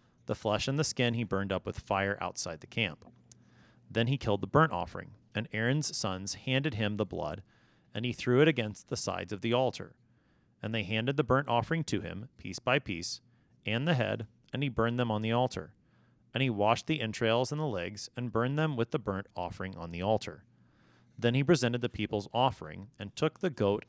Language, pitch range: English, 100-130 Hz